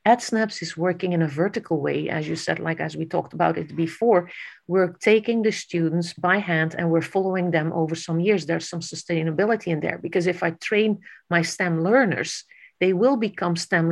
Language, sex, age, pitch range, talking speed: English, female, 50-69, 170-210 Hz, 200 wpm